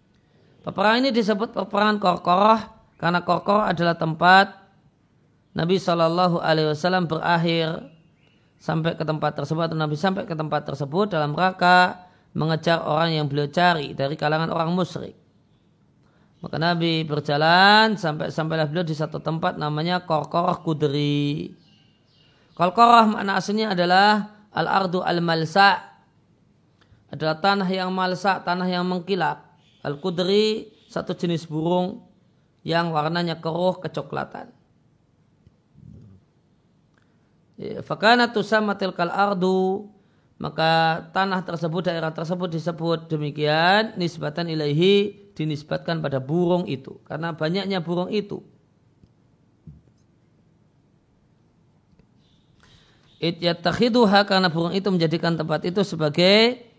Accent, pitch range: native, 155-190 Hz